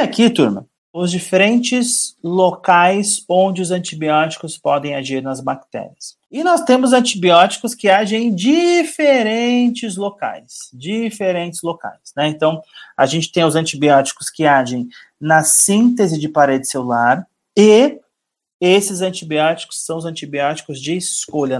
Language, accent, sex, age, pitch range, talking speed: Portuguese, Brazilian, male, 30-49, 150-210 Hz, 125 wpm